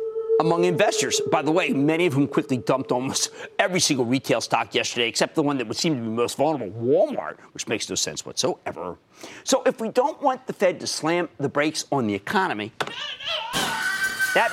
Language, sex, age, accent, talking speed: English, male, 40-59, American, 195 wpm